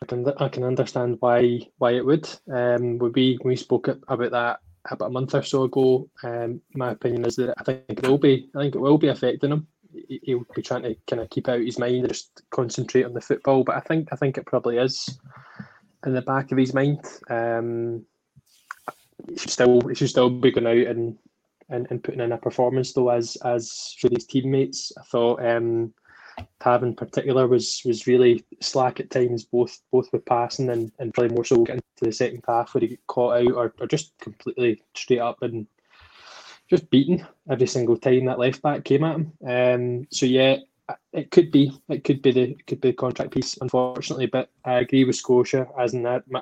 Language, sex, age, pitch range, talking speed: English, male, 20-39, 120-135 Hz, 215 wpm